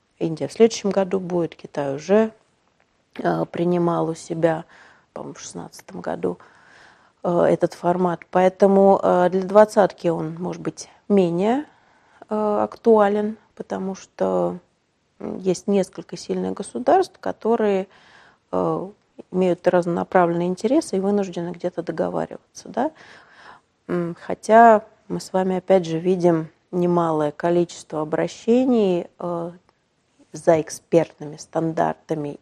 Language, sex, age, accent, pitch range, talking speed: Russian, female, 30-49, native, 165-200 Hz, 105 wpm